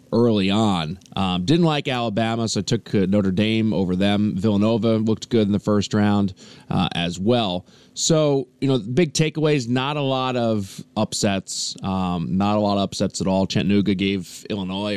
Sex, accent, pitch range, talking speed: male, American, 100-125 Hz, 175 wpm